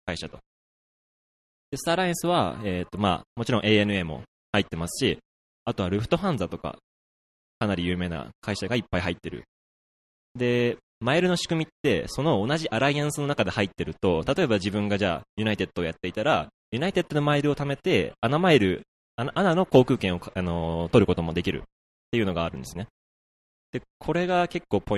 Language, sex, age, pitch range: Japanese, male, 20-39, 85-130 Hz